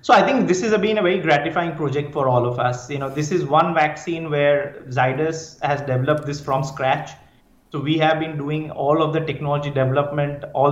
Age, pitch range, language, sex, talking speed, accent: 30-49, 135-165 Hz, English, male, 215 wpm, Indian